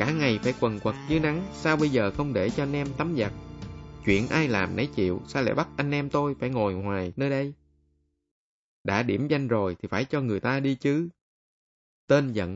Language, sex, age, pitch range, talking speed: Vietnamese, male, 20-39, 100-145 Hz, 220 wpm